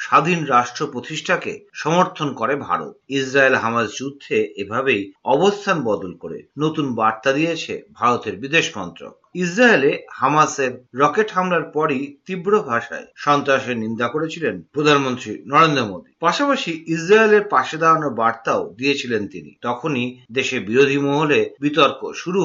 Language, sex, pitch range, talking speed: Bengali, male, 130-180 Hz, 105 wpm